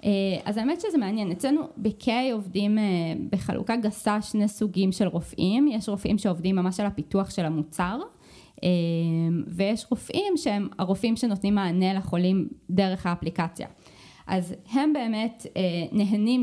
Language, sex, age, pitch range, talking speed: Hebrew, female, 20-39, 180-215 Hz, 125 wpm